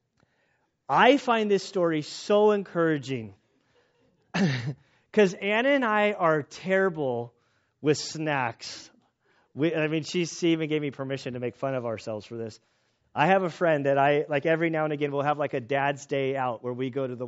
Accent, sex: American, male